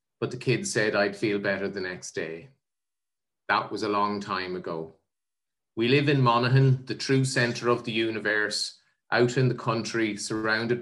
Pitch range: 100-120 Hz